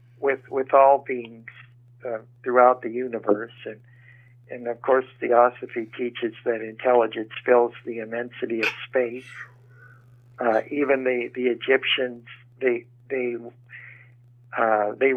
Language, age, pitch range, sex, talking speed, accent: English, 60-79, 120-125 Hz, male, 120 wpm, American